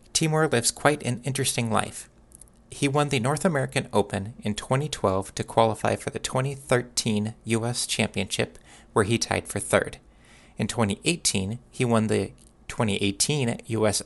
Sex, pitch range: male, 105-130 Hz